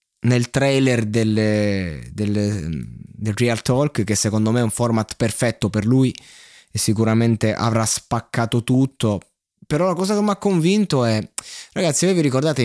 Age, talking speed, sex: 20-39, 145 wpm, male